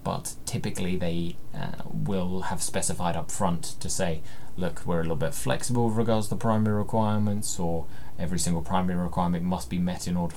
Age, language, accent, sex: 20-39, English, British, male